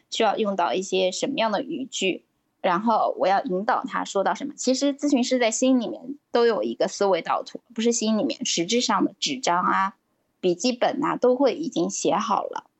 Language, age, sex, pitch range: Chinese, 10-29, female, 200-280 Hz